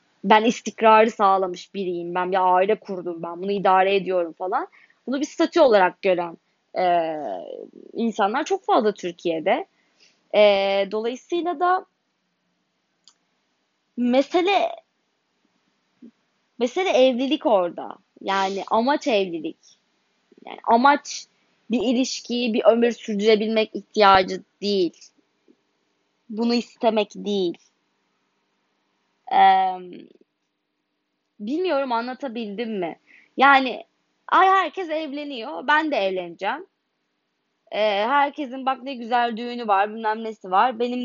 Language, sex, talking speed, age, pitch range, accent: Turkish, female, 95 wpm, 20-39, 195-300 Hz, native